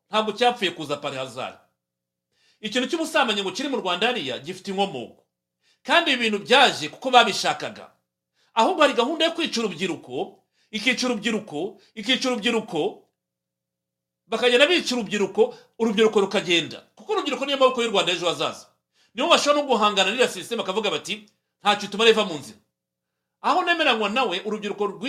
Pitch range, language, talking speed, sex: 165-240 Hz, English, 125 wpm, male